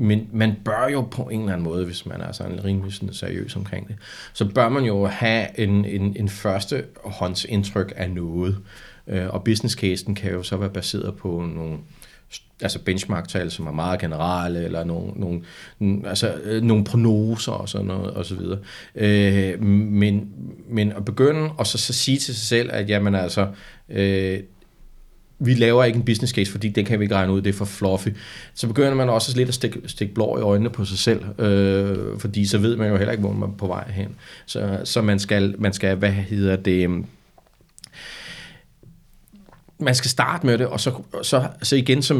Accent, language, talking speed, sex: native, Danish, 190 wpm, male